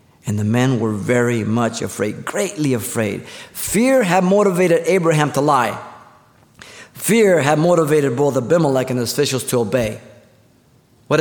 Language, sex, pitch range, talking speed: English, male, 120-155 Hz, 140 wpm